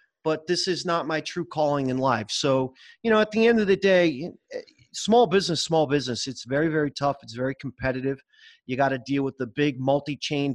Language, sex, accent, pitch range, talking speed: English, male, American, 130-165 Hz, 210 wpm